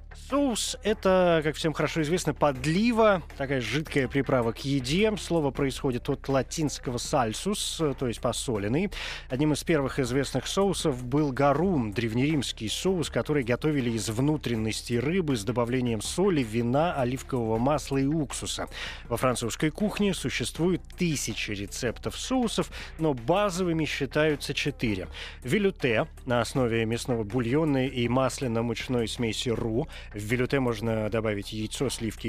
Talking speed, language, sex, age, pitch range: 130 wpm, Russian, male, 20-39, 120-155 Hz